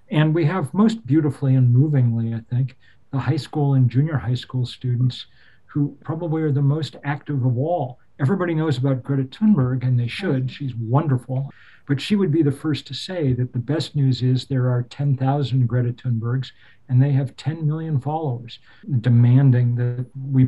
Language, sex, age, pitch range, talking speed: English, male, 50-69, 120-145 Hz, 180 wpm